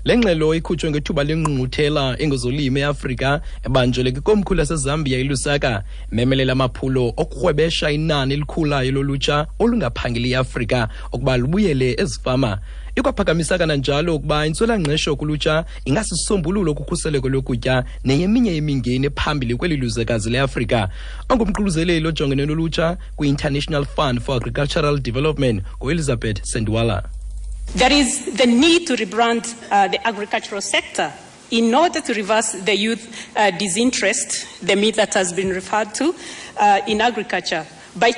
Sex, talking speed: male, 125 wpm